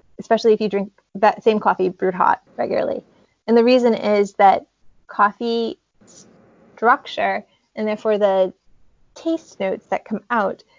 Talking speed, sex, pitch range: 140 wpm, female, 205-250 Hz